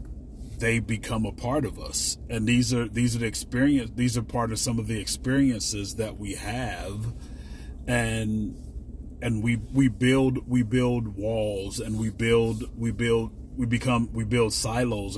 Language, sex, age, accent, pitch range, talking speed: English, male, 40-59, American, 70-115 Hz, 165 wpm